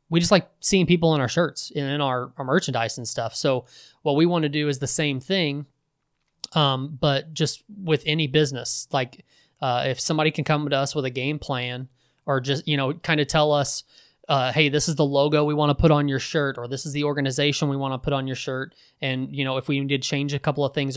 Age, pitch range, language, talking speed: 20-39, 130-145 Hz, English, 250 wpm